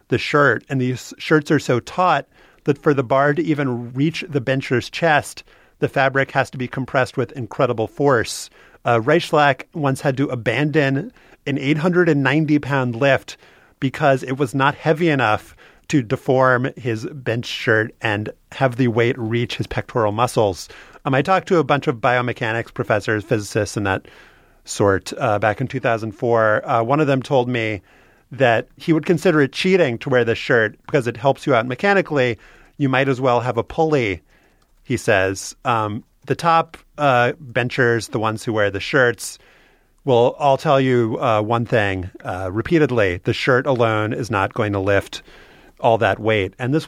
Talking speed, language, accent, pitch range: 175 wpm, English, American, 115-145 Hz